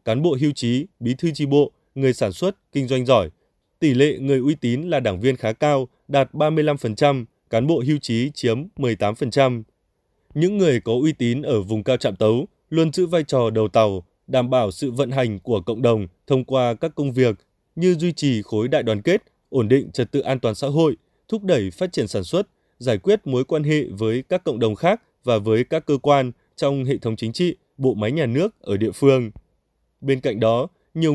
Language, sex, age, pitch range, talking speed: Vietnamese, male, 20-39, 115-150 Hz, 220 wpm